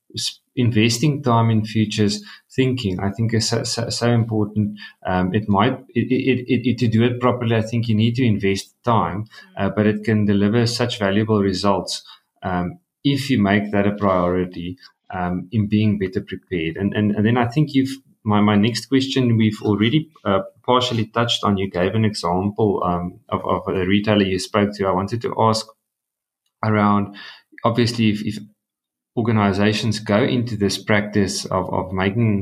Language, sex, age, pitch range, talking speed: English, male, 30-49, 100-115 Hz, 175 wpm